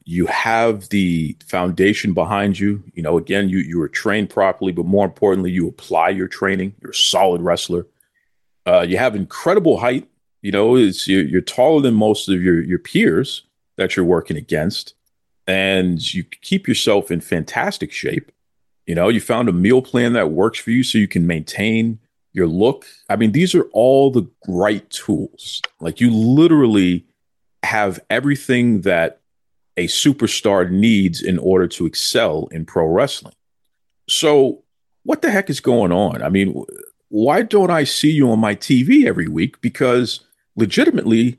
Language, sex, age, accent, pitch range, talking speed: English, male, 40-59, American, 95-130 Hz, 165 wpm